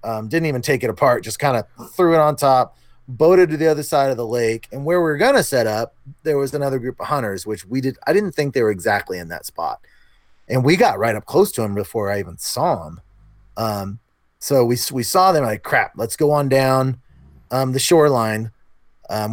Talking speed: 235 wpm